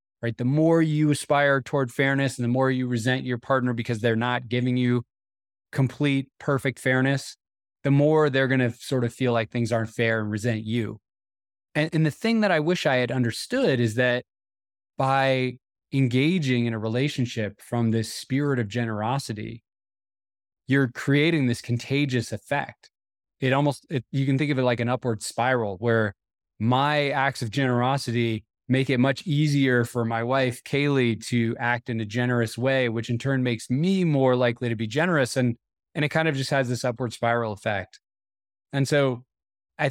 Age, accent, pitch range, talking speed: 20-39, American, 115-135 Hz, 175 wpm